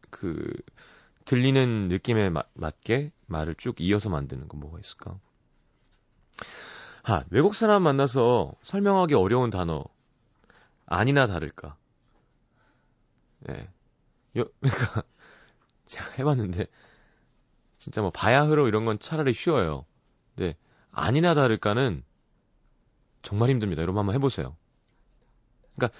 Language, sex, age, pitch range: Korean, male, 30-49, 95-135 Hz